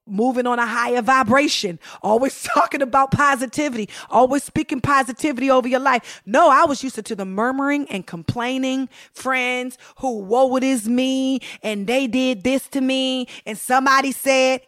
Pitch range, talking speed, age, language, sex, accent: 245-325 Hz, 165 wpm, 30-49, English, female, American